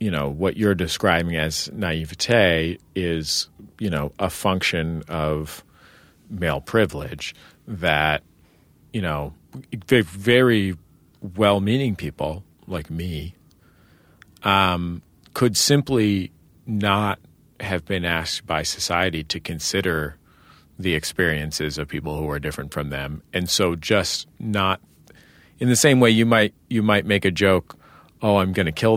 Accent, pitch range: American, 80-100 Hz